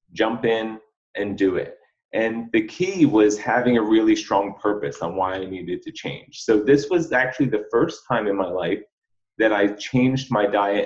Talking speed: 195 wpm